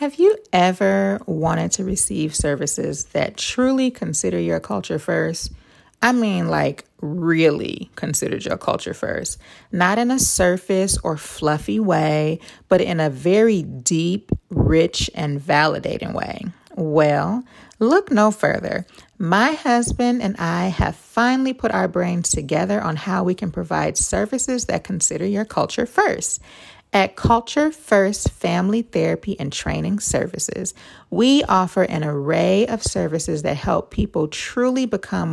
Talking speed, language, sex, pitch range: 140 wpm, English, female, 155-220 Hz